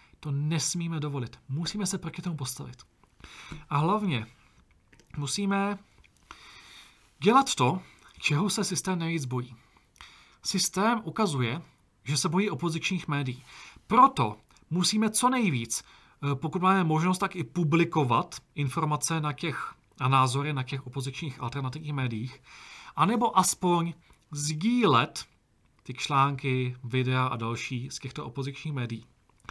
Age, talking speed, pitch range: 40-59, 115 wpm, 130-185 Hz